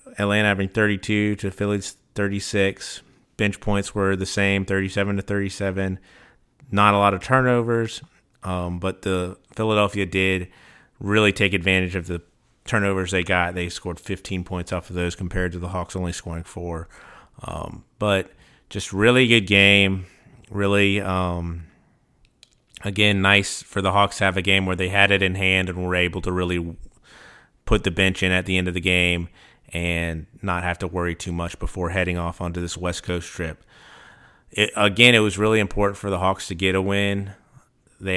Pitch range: 90-100 Hz